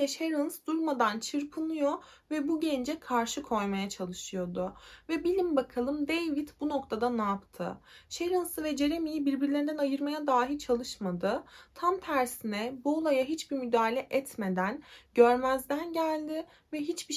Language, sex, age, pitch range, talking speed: Turkish, female, 30-49, 230-300 Hz, 125 wpm